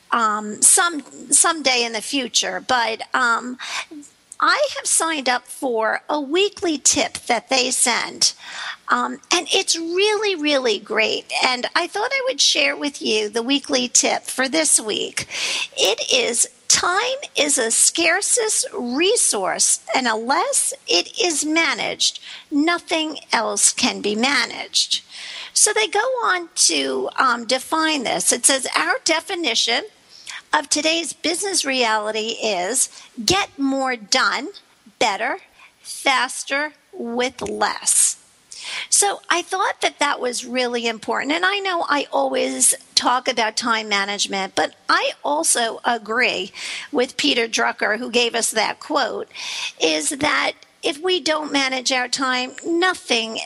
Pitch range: 235-345 Hz